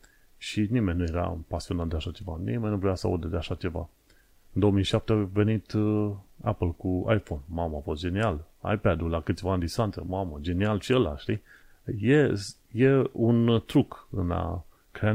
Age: 30-49